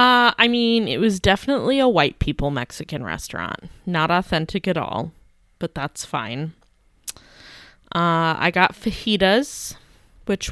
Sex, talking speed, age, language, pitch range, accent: female, 130 wpm, 20-39, English, 155-210 Hz, American